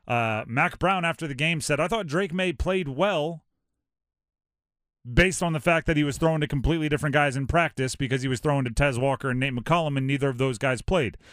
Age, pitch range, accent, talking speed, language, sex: 30-49, 135-175 Hz, American, 230 wpm, English, male